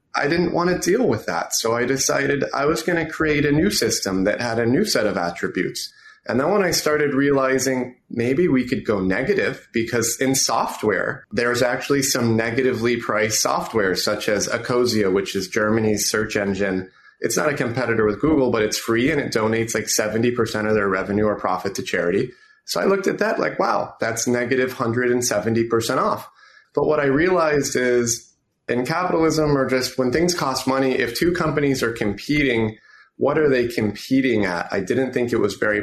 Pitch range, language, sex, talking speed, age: 110-135 Hz, English, male, 190 wpm, 30-49